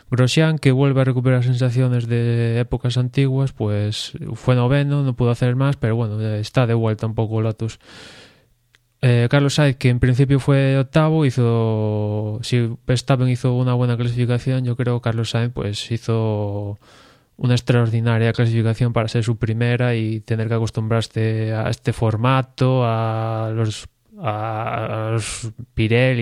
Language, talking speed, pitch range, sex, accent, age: Spanish, 145 wpm, 115-125 Hz, male, Spanish, 20-39